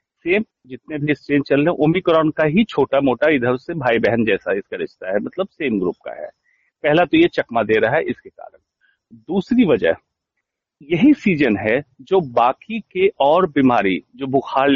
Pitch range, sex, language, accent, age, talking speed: 130-210 Hz, male, Hindi, native, 40-59, 185 wpm